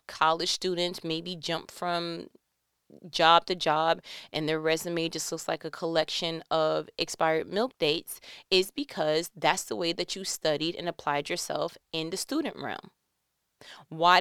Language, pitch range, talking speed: English, 160-205 Hz, 150 wpm